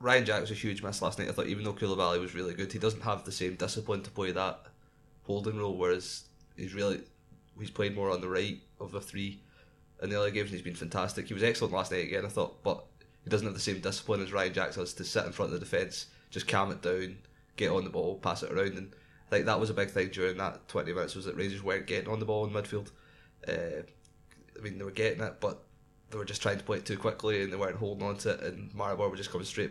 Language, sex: English, male